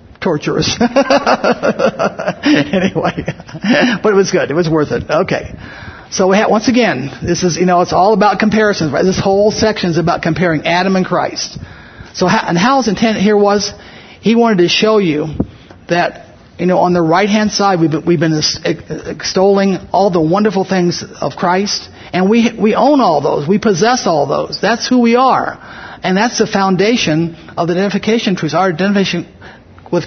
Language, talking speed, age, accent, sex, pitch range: English, 180 wpm, 50-69, American, male, 160-210 Hz